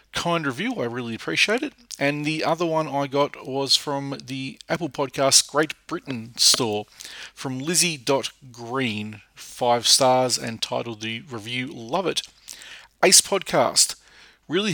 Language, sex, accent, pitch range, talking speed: English, male, Australian, 115-145 Hz, 135 wpm